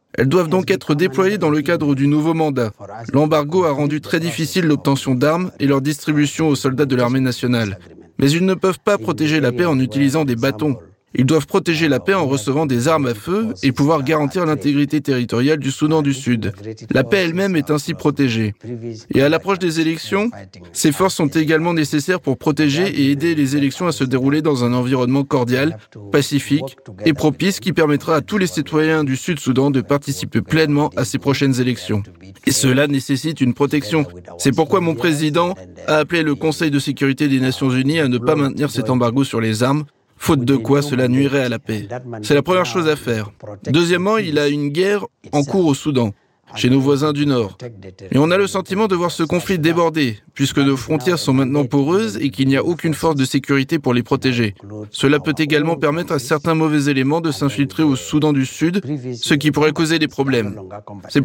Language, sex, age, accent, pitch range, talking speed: French, male, 20-39, French, 130-160 Hz, 205 wpm